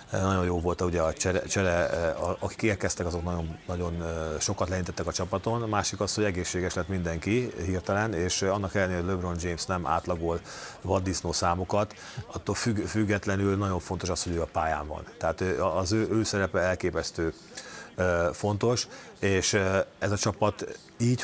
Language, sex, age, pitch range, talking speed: Hungarian, male, 30-49, 90-100 Hz, 150 wpm